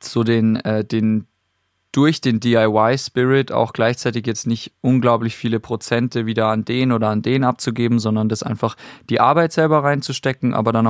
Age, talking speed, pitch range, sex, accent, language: 20-39, 175 wpm, 110-125 Hz, male, German, German